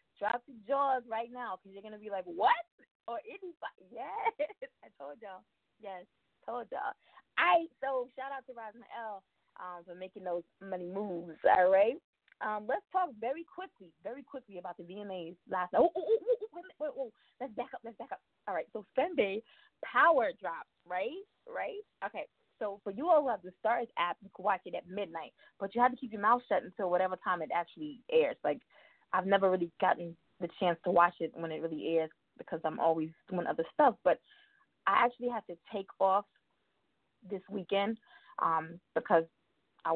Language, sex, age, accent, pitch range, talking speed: English, female, 20-39, American, 180-250 Hz, 200 wpm